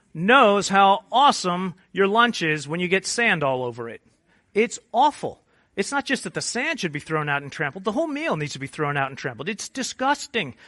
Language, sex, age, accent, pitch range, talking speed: English, male, 40-59, American, 140-215 Hz, 220 wpm